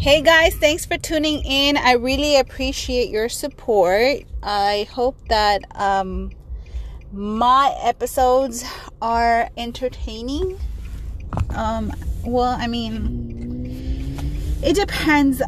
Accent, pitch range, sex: American, 185-260 Hz, female